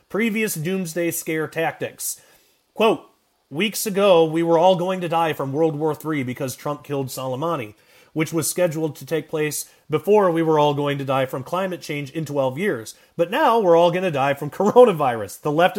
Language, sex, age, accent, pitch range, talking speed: English, male, 30-49, American, 145-185 Hz, 195 wpm